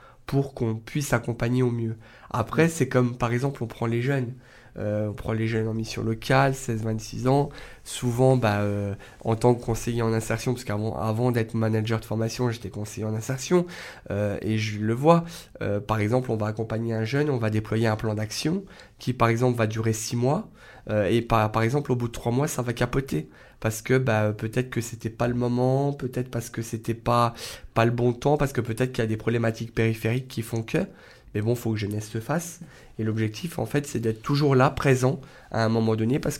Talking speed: 225 wpm